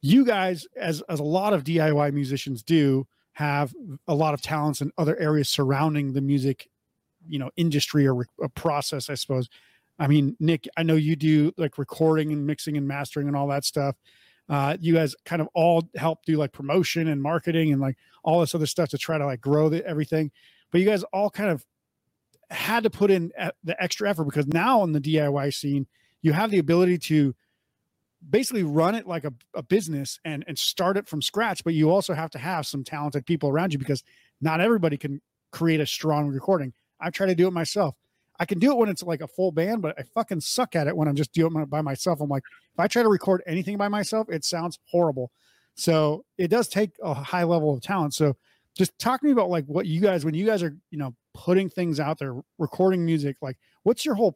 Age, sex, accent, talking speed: 30-49, male, American, 225 wpm